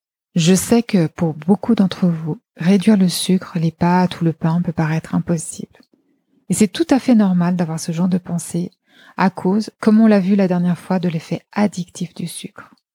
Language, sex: French, female